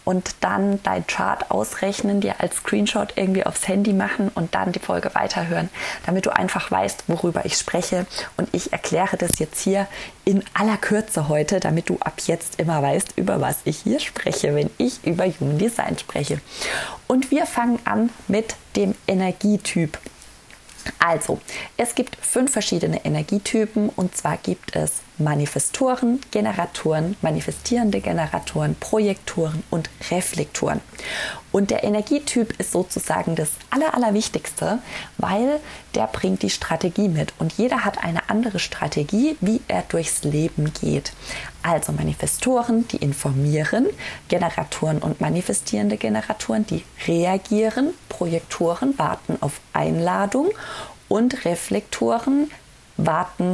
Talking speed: 130 wpm